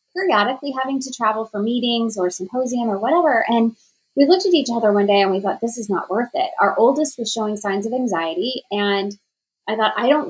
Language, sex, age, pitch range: English, female, 20-39, 195-250 Hz